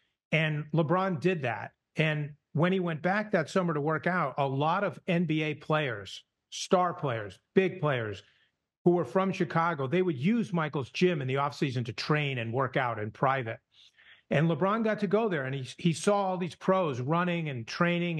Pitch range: 145-180 Hz